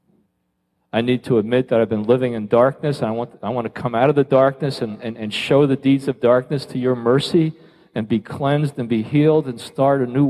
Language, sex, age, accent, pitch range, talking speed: English, male, 40-59, American, 95-145 Hz, 240 wpm